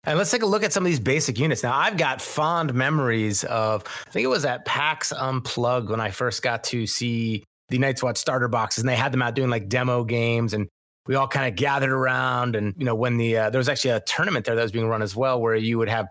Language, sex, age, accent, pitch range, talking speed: English, male, 30-49, American, 115-145 Hz, 270 wpm